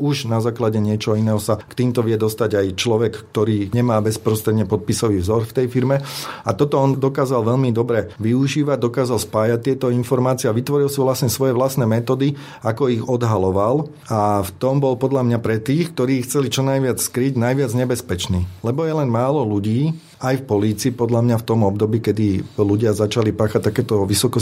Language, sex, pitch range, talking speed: Slovak, male, 105-130 Hz, 185 wpm